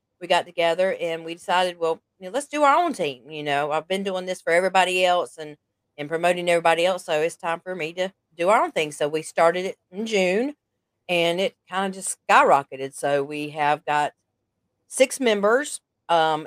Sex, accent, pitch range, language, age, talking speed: female, American, 150-190 Hz, English, 40-59, 210 wpm